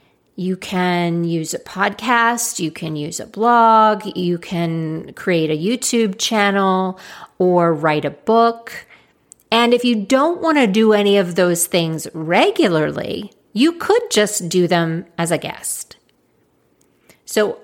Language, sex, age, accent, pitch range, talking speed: English, female, 40-59, American, 175-230 Hz, 140 wpm